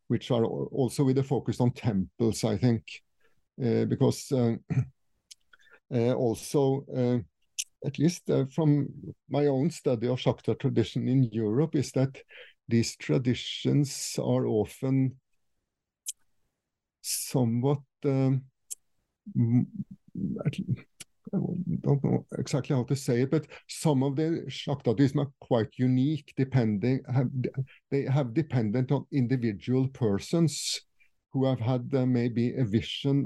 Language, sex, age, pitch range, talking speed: English, male, 50-69, 115-140 Hz, 120 wpm